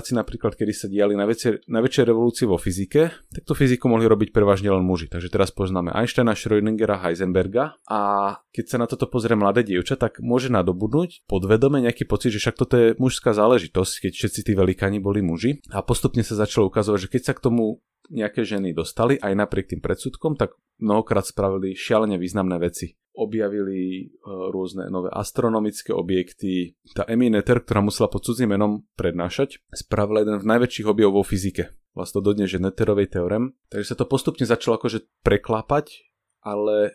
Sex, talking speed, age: male, 175 wpm, 30-49